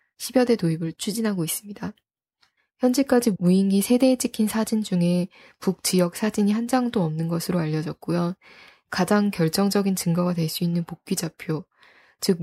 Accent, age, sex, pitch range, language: native, 20-39, female, 170-205 Hz, Korean